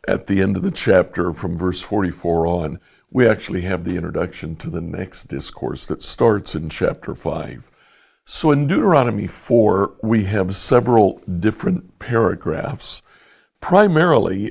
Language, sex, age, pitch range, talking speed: English, male, 60-79, 90-120 Hz, 140 wpm